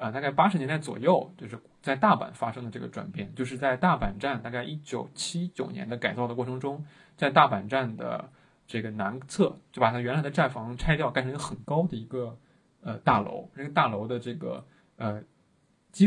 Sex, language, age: male, Chinese, 20-39